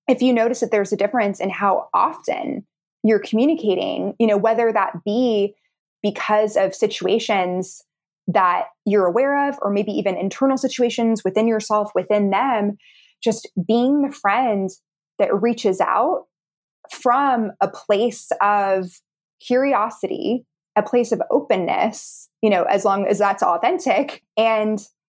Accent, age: American, 20-39